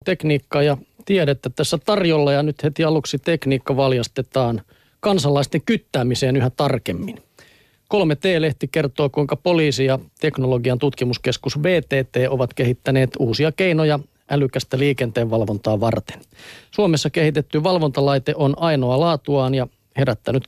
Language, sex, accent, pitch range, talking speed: Finnish, male, native, 125-150 Hz, 115 wpm